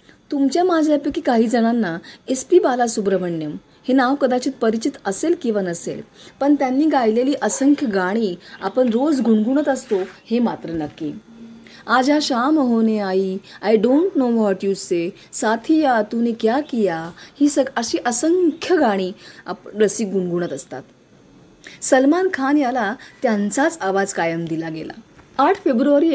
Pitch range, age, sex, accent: 195-270 Hz, 30-49, female, native